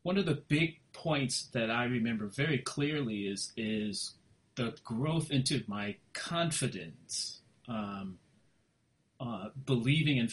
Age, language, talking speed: 30-49, English, 120 wpm